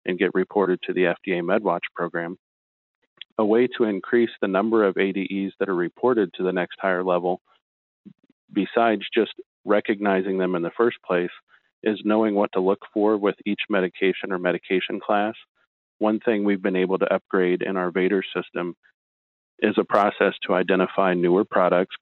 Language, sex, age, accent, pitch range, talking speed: English, male, 40-59, American, 90-100 Hz, 170 wpm